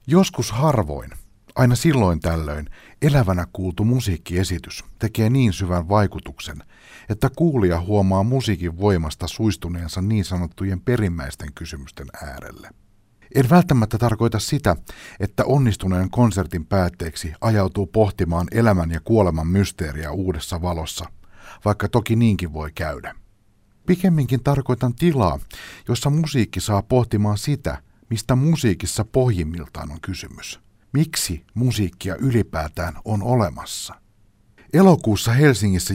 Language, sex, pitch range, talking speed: Finnish, male, 90-120 Hz, 105 wpm